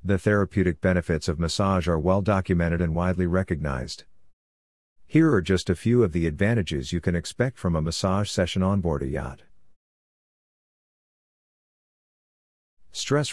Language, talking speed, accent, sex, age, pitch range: English, 135 wpm, American, male, 50-69, 85-105 Hz